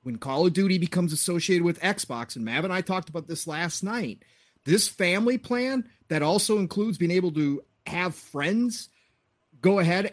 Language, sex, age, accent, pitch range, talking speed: English, male, 30-49, American, 155-220 Hz, 180 wpm